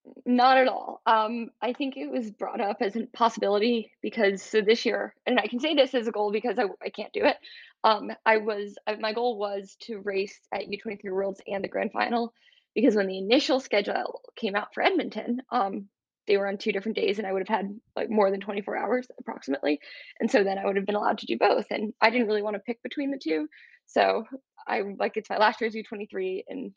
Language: English